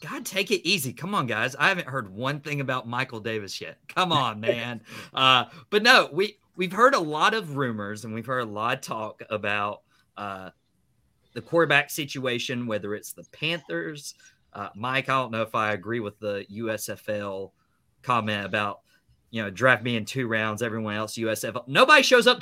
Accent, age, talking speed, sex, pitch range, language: American, 30-49, 190 wpm, male, 110-150 Hz, English